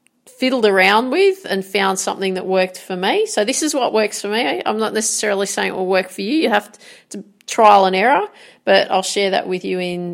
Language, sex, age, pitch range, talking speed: English, female, 40-59, 190-225 Hz, 230 wpm